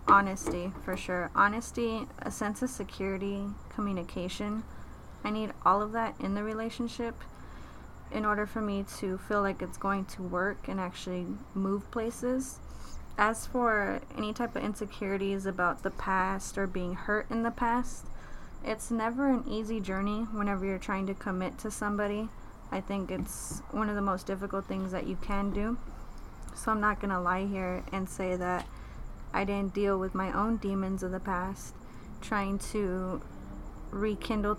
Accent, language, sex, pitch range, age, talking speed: American, English, female, 190-220 Hz, 20-39, 165 wpm